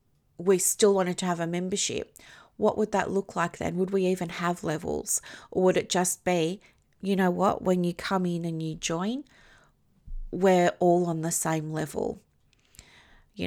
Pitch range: 170-195 Hz